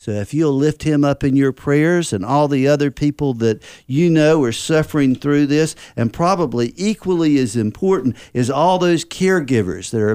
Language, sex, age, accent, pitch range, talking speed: English, male, 50-69, American, 120-160 Hz, 190 wpm